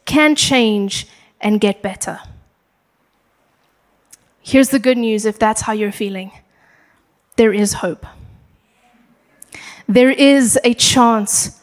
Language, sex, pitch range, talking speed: English, female, 225-275 Hz, 110 wpm